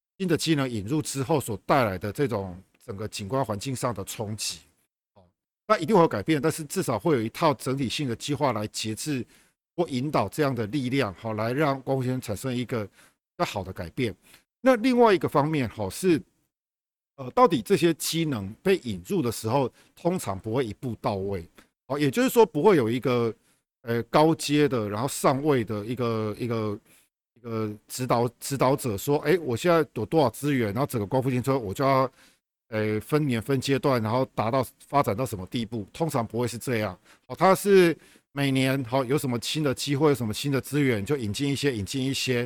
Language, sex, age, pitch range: Chinese, male, 50-69, 115-155 Hz